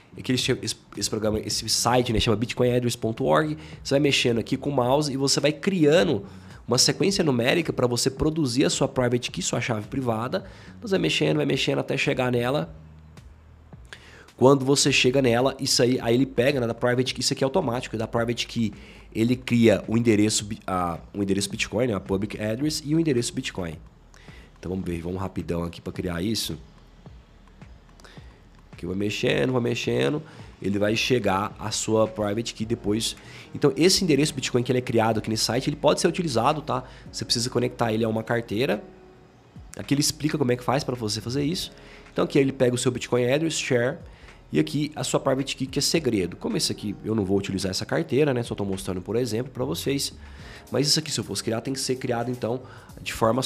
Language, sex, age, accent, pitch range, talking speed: Portuguese, male, 20-39, Brazilian, 105-135 Hz, 205 wpm